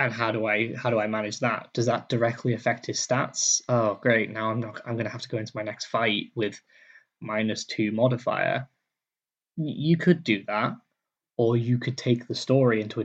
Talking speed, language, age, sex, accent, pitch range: 205 wpm, English, 10-29, male, British, 110-125 Hz